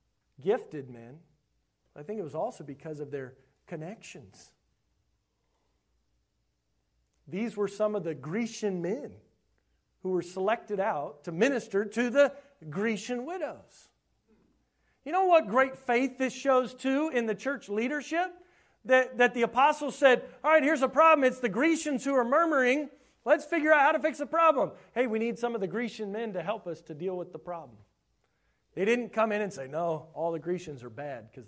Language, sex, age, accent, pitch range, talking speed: English, male, 40-59, American, 155-255 Hz, 175 wpm